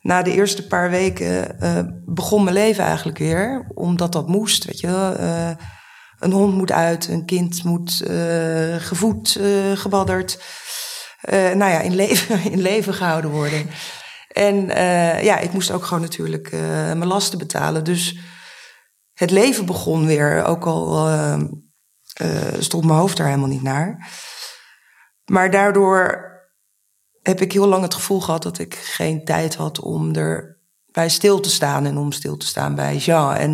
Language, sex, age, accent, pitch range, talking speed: Dutch, female, 20-39, Dutch, 150-190 Hz, 165 wpm